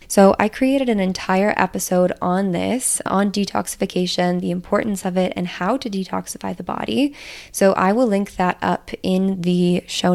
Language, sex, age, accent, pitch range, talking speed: English, female, 20-39, American, 180-210 Hz, 170 wpm